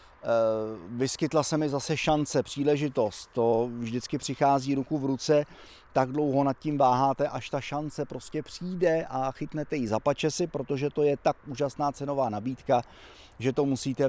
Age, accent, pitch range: 30-49, native, 125-150 Hz